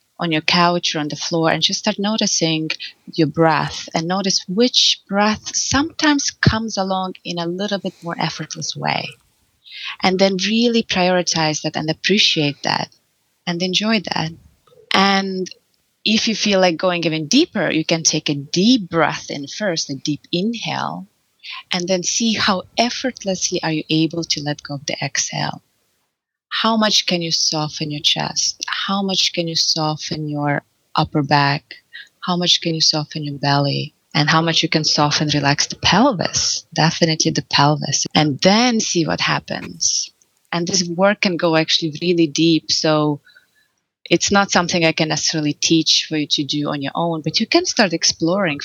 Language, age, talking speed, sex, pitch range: English, 20-39, 170 wpm, female, 155-190 Hz